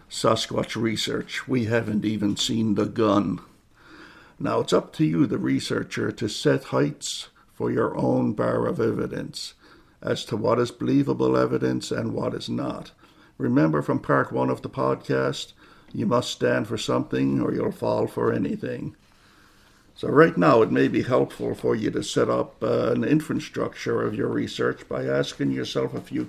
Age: 60-79